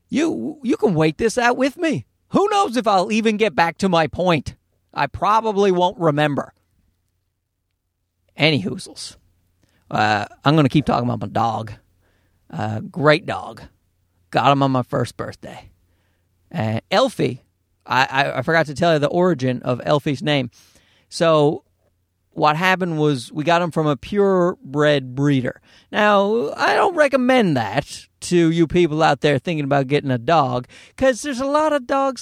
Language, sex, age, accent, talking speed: English, male, 40-59, American, 160 wpm